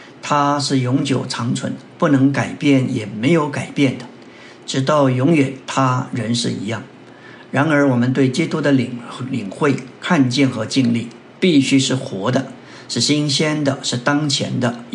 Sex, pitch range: male, 125-145 Hz